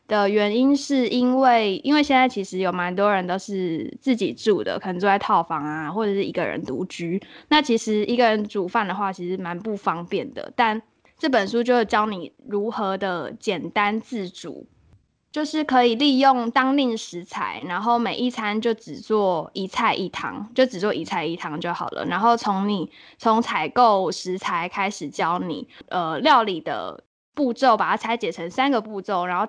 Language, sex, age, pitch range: Chinese, female, 10-29, 190-240 Hz